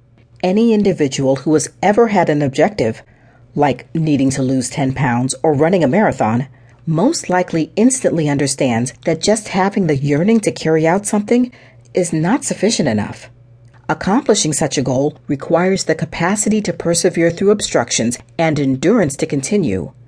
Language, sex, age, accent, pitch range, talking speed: English, female, 40-59, American, 125-175 Hz, 150 wpm